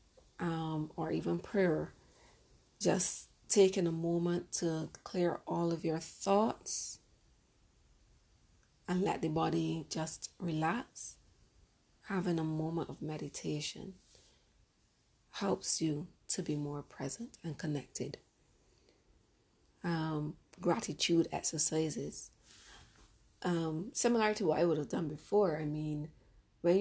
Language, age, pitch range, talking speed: English, 30-49, 150-175 Hz, 105 wpm